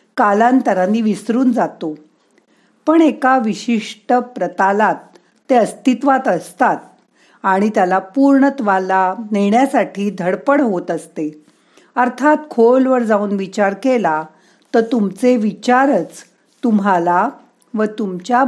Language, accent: Marathi, native